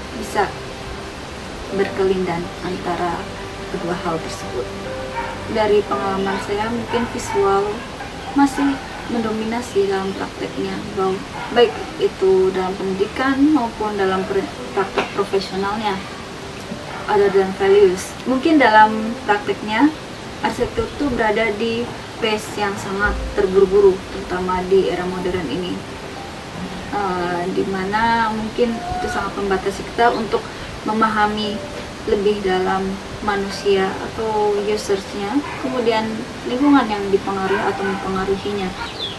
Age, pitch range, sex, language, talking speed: 20-39, 195-235 Hz, female, Indonesian, 95 wpm